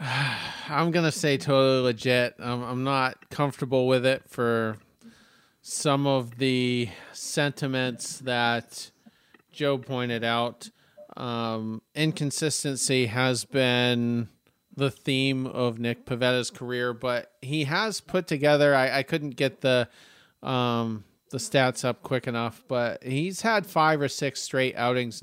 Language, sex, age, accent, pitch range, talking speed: English, male, 40-59, American, 120-140 Hz, 130 wpm